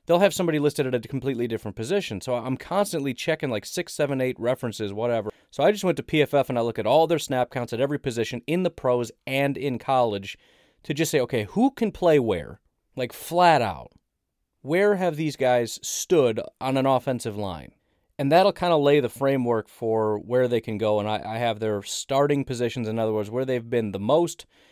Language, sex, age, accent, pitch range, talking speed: English, male, 30-49, American, 105-140 Hz, 215 wpm